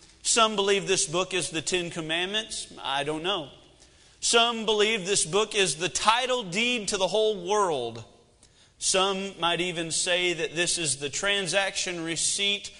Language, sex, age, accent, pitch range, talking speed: English, male, 40-59, American, 175-220 Hz, 155 wpm